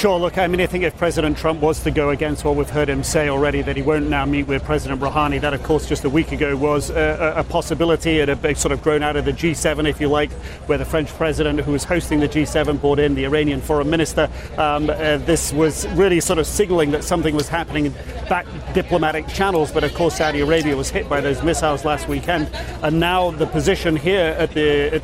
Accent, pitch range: British, 145-165 Hz